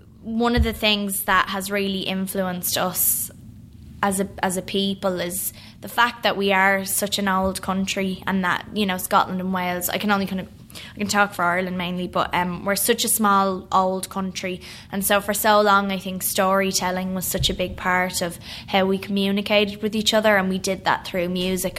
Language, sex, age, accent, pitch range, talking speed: English, female, 20-39, Irish, 180-200 Hz, 210 wpm